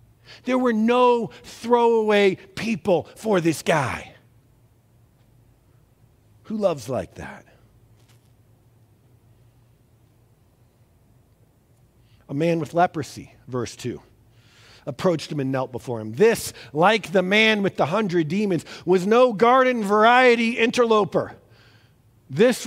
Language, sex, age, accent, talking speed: English, male, 50-69, American, 100 wpm